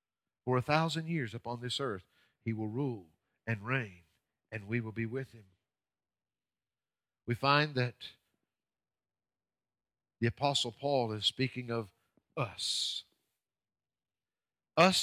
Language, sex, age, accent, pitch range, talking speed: English, male, 50-69, American, 120-175 Hz, 115 wpm